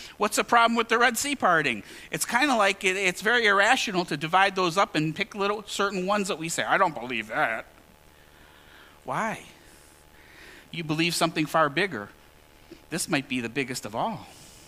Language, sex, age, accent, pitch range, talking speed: English, male, 50-69, American, 120-200 Hz, 180 wpm